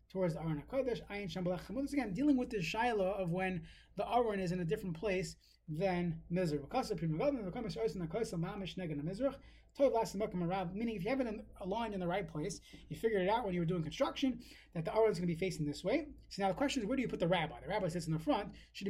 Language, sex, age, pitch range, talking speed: English, male, 30-49, 165-220 Hz, 220 wpm